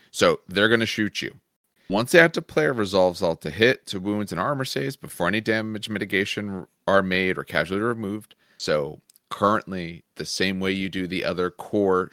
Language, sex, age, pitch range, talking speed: English, male, 30-49, 85-105 Hz, 190 wpm